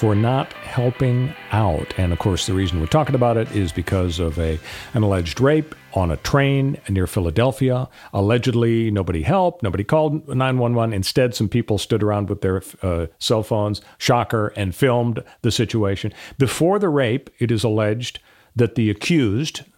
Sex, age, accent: male, 50-69, American